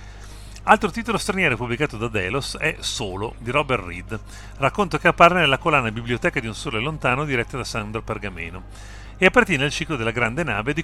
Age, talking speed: 40-59, 185 wpm